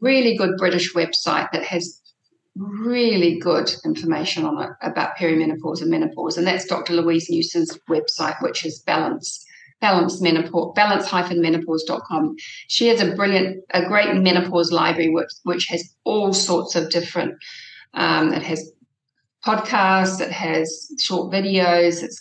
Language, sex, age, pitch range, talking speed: English, female, 40-59, 170-200 Hz, 140 wpm